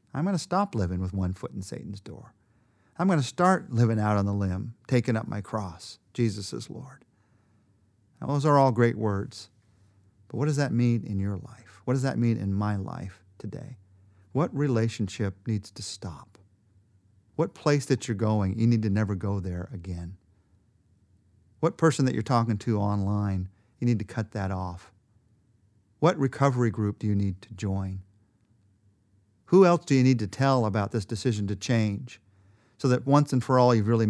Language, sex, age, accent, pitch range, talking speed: English, male, 50-69, American, 100-130 Hz, 185 wpm